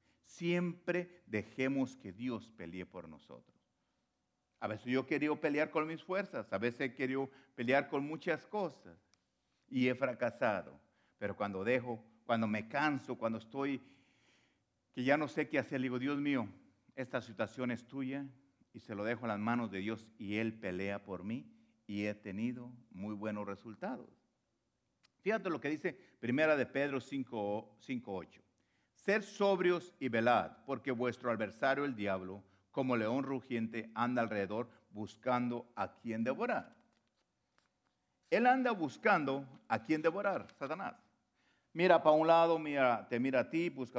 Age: 50-69